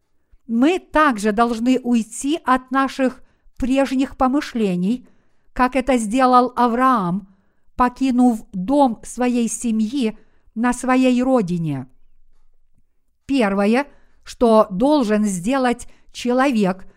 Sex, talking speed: female, 85 wpm